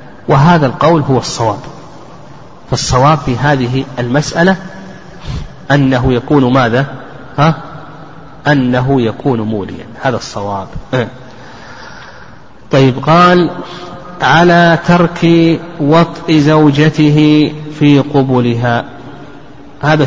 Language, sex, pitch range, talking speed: Arabic, male, 130-155 Hz, 80 wpm